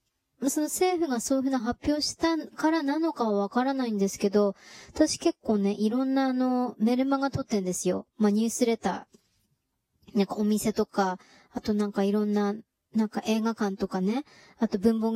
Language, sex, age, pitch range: Japanese, male, 20-39, 200-255 Hz